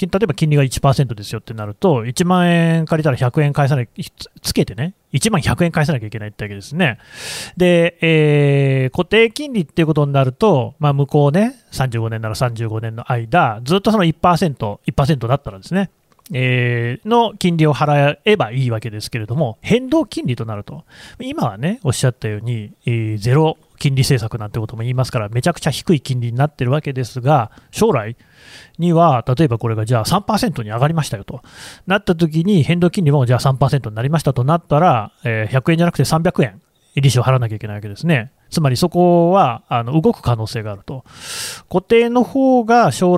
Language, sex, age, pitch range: Japanese, male, 30-49, 125-175 Hz